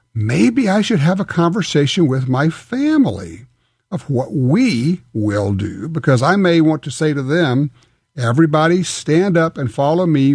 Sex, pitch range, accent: male, 125-175 Hz, American